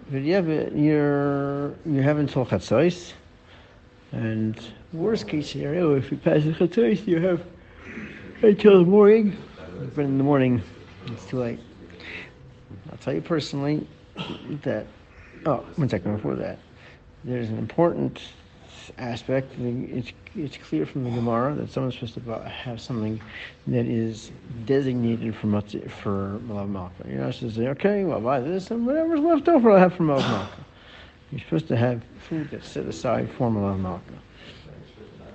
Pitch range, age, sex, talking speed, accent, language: 110-150 Hz, 60-79, male, 155 wpm, American, English